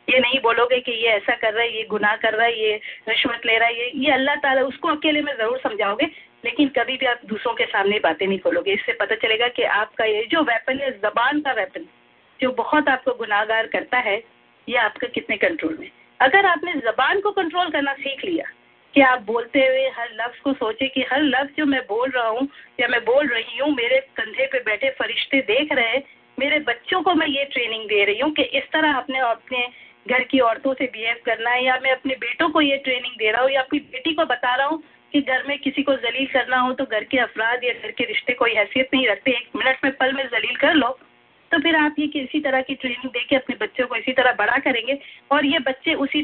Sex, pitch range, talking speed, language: female, 235-295 Hz, 185 wpm, English